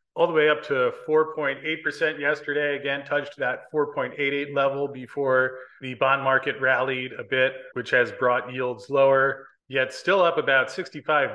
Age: 30-49